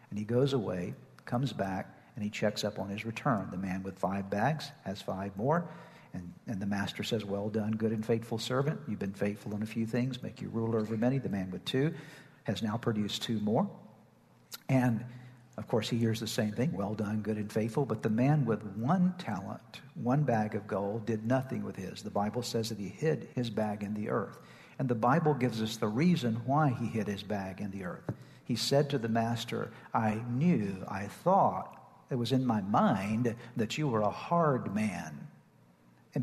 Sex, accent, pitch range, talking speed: male, American, 110-140 Hz, 210 wpm